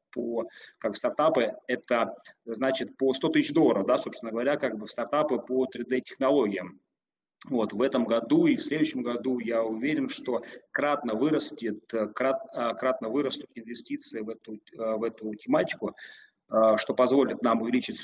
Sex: male